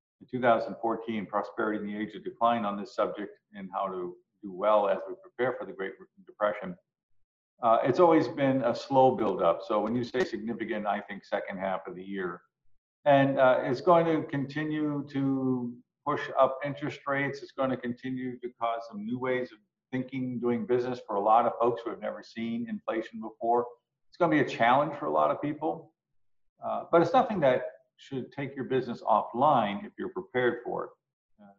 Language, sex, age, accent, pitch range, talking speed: English, male, 50-69, American, 110-150 Hz, 195 wpm